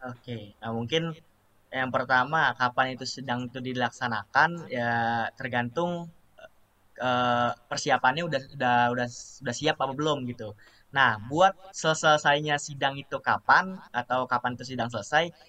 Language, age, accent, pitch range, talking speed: Indonesian, 20-39, native, 120-160 Hz, 130 wpm